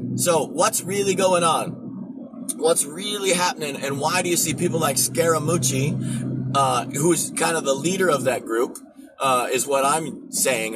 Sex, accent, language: male, American, English